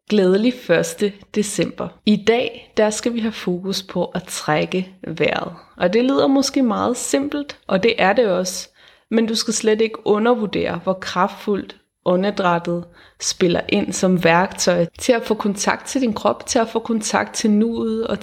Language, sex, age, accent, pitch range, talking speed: Danish, female, 30-49, native, 190-230 Hz, 170 wpm